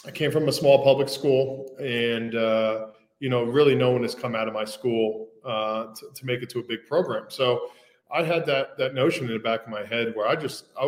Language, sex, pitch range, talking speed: English, male, 115-135 Hz, 250 wpm